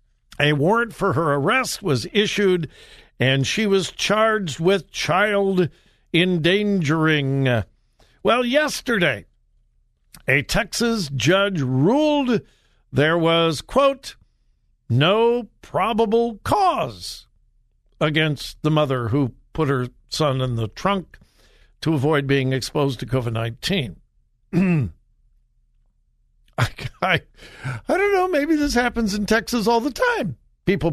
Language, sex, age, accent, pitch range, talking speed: English, male, 60-79, American, 135-195 Hz, 105 wpm